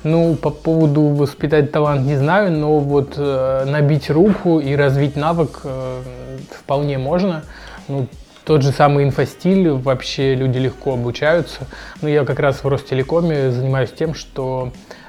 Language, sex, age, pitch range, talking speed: Russian, male, 20-39, 130-155 Hz, 135 wpm